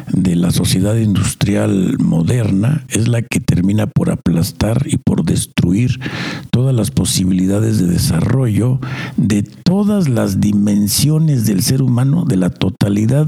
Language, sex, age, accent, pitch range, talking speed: Spanish, male, 60-79, Mexican, 100-145 Hz, 130 wpm